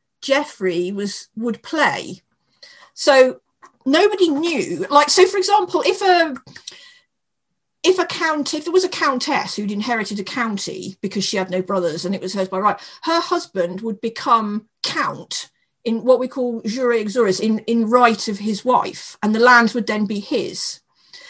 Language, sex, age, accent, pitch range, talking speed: English, female, 50-69, British, 210-285 Hz, 170 wpm